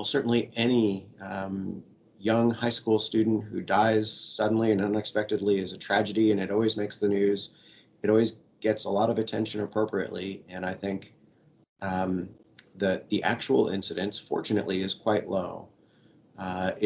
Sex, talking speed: male, 150 wpm